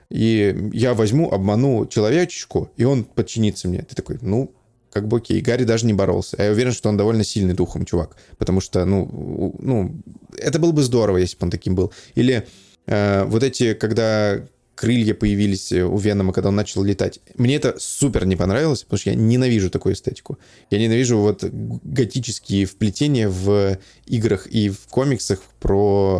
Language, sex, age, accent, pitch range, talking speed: Russian, male, 20-39, native, 100-120 Hz, 170 wpm